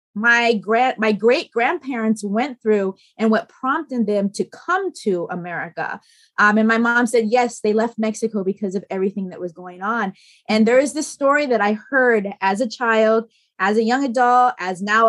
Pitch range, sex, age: 205-255 Hz, female, 20-39